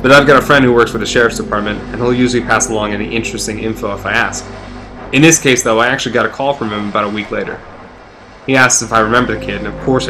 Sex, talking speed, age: male, 280 wpm, 20-39